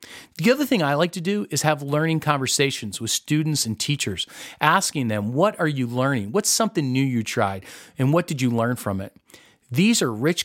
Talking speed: 205 wpm